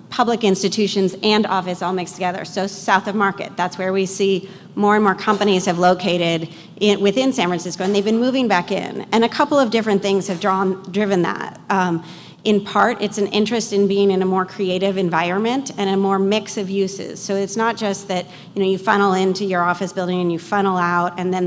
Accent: American